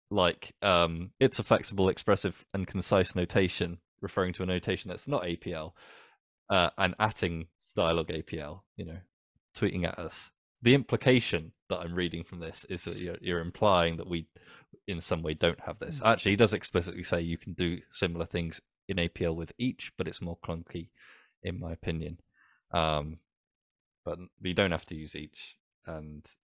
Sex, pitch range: male, 85-100 Hz